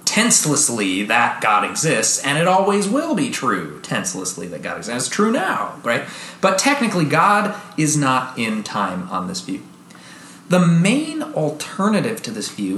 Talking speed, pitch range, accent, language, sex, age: 160 wpm, 120-170 Hz, American, English, male, 30-49